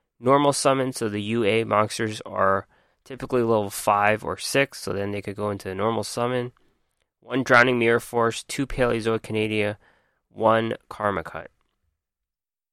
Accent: American